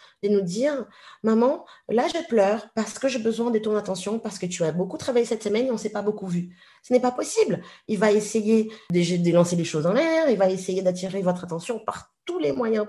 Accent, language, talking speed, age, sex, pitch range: French, French, 250 wpm, 40-59, female, 180-235 Hz